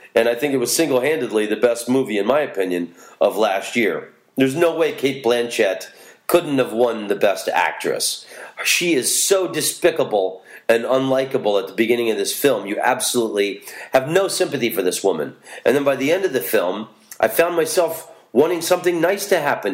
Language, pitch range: English, 120-180 Hz